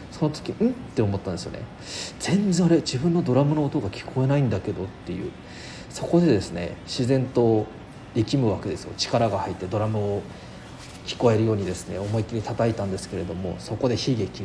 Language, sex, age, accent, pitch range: Japanese, male, 40-59, native, 100-135 Hz